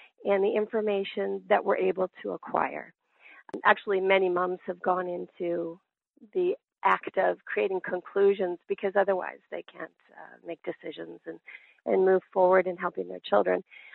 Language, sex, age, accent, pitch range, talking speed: English, female, 40-59, American, 195-245 Hz, 145 wpm